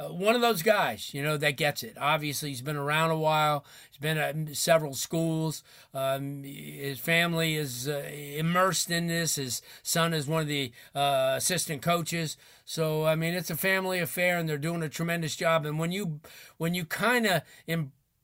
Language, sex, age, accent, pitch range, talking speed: English, male, 40-59, American, 135-170 Hz, 190 wpm